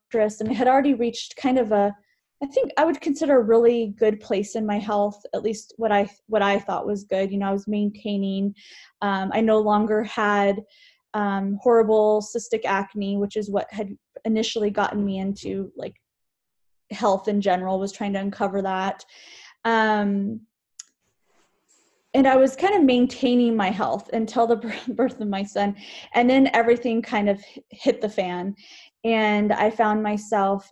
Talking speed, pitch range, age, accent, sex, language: 170 wpm, 205-245 Hz, 20-39, American, female, English